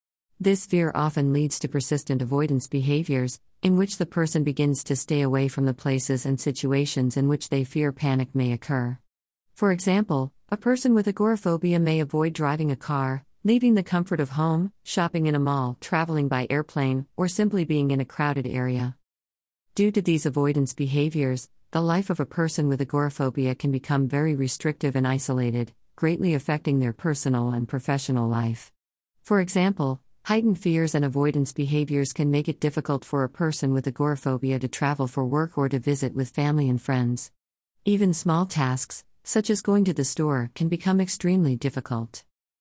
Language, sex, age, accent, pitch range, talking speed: English, female, 40-59, American, 130-160 Hz, 175 wpm